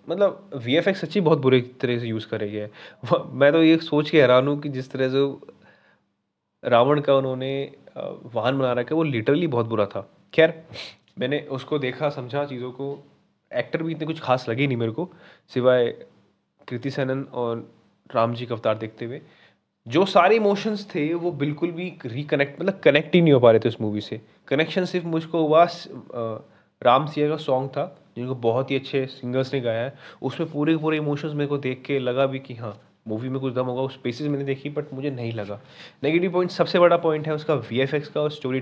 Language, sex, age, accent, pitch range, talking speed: Hindi, male, 20-39, native, 125-150 Hz, 205 wpm